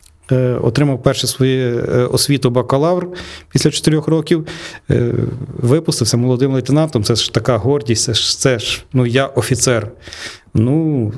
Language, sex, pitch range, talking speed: Ukrainian, male, 120-150 Hz, 120 wpm